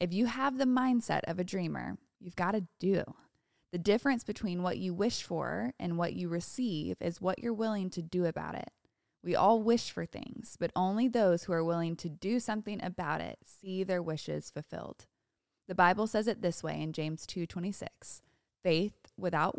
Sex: female